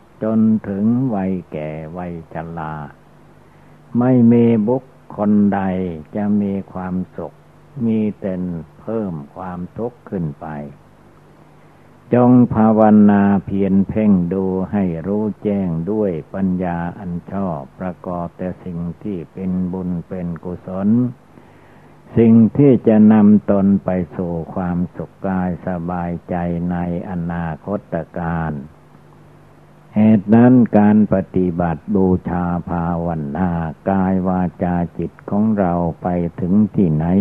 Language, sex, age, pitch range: Thai, male, 60-79, 85-105 Hz